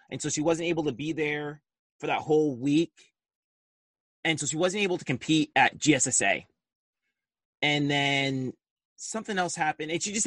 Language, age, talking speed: English, 30-49, 170 wpm